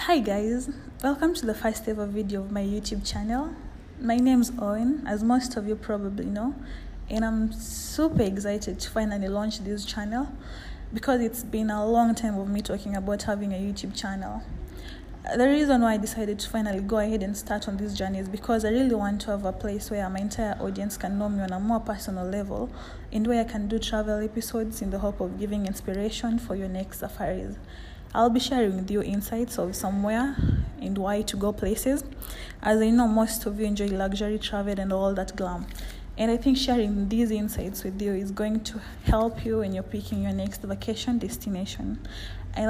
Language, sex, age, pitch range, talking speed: English, female, 20-39, 195-225 Hz, 200 wpm